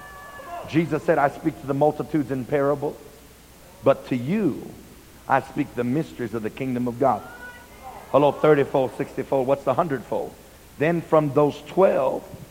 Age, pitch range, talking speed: 50-69, 135-170 Hz, 150 wpm